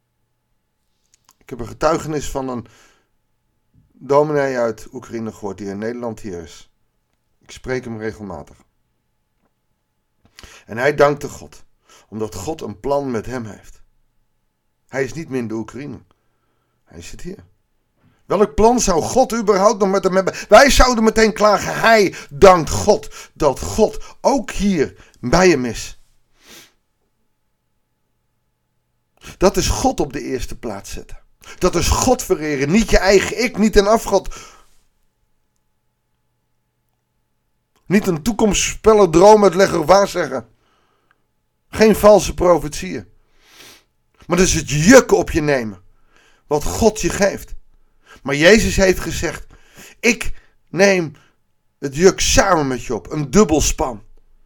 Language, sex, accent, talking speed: Dutch, male, Dutch, 130 wpm